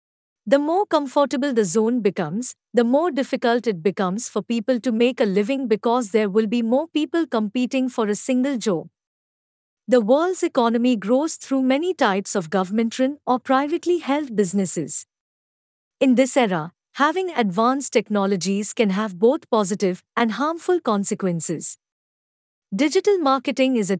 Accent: Indian